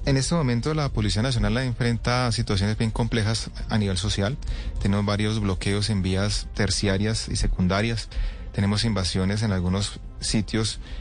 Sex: male